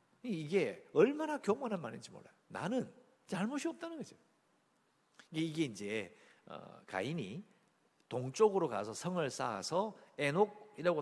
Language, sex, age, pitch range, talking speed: English, male, 50-69, 130-210 Hz, 100 wpm